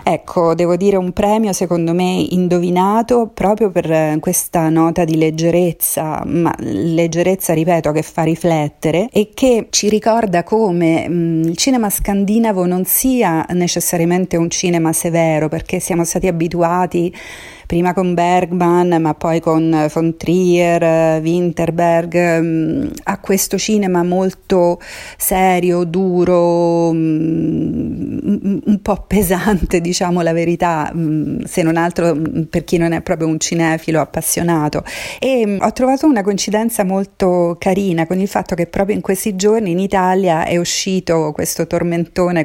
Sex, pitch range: female, 165-195 Hz